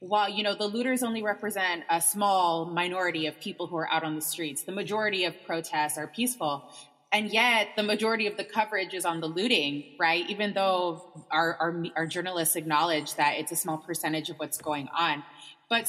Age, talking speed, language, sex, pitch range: 20-39, 200 wpm, English, female, 160-195 Hz